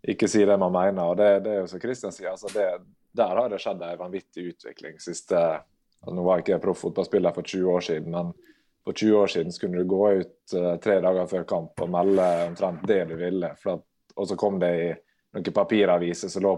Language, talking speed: English, 220 wpm